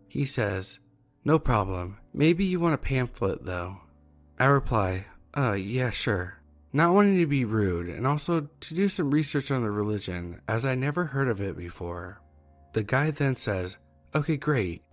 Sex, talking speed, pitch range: male, 170 wpm, 95-140 Hz